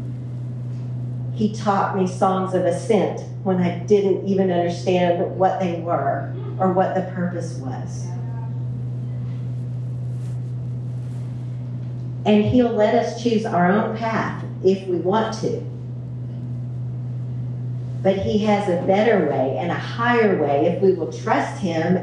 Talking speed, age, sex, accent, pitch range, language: 125 wpm, 50-69, female, American, 125-185 Hz, English